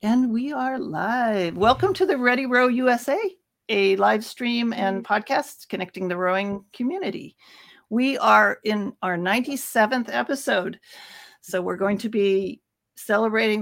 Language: English